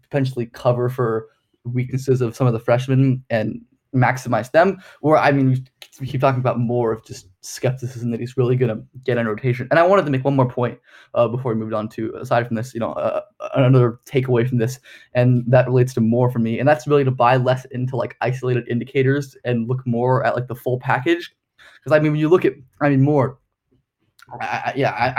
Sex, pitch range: male, 120-135 Hz